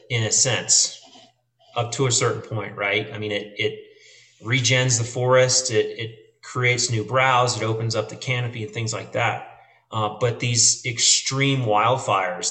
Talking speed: 170 wpm